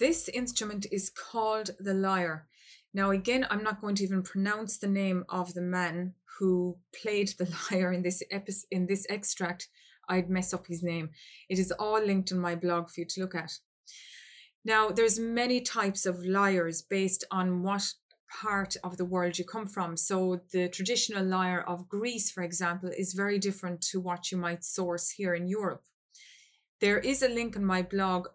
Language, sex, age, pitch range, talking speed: English, female, 20-39, 180-210 Hz, 185 wpm